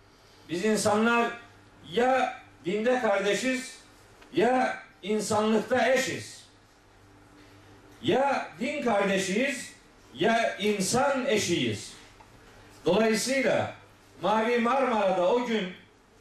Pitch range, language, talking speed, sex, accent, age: 200-245 Hz, Turkish, 70 wpm, male, native, 50-69